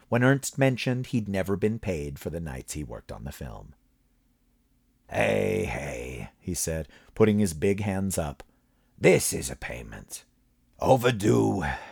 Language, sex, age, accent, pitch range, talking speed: English, male, 40-59, American, 85-130 Hz, 145 wpm